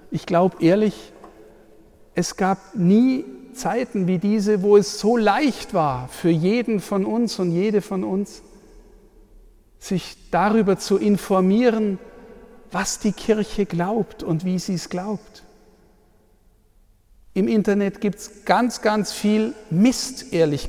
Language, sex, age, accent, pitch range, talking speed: German, male, 50-69, German, 170-205 Hz, 130 wpm